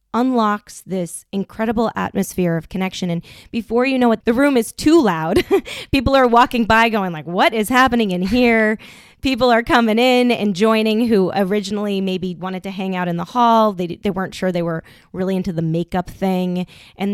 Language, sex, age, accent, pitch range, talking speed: English, female, 20-39, American, 175-215 Hz, 195 wpm